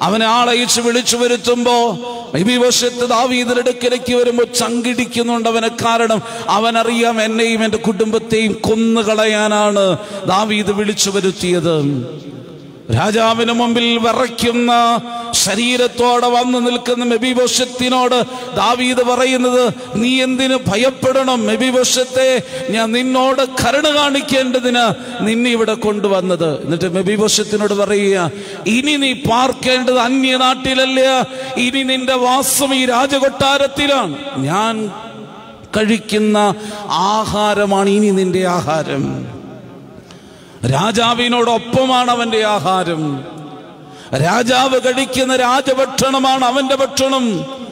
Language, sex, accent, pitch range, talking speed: English, male, Indian, 210-250 Hz, 65 wpm